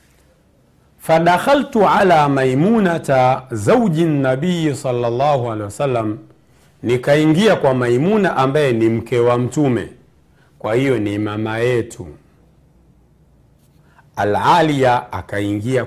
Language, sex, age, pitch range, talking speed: Swahili, male, 50-69, 120-170 Hz, 85 wpm